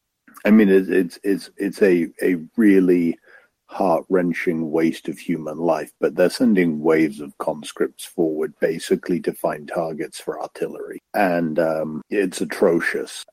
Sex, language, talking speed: male, English, 140 wpm